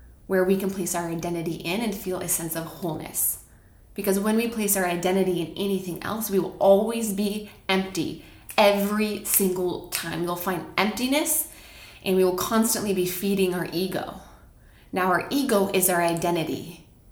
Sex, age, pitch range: female, 20-39, 175-205 Hz